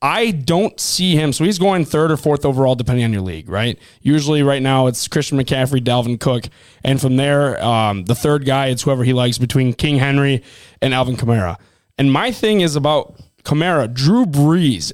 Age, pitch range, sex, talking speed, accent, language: 20-39, 130-160 Hz, male, 195 wpm, American, English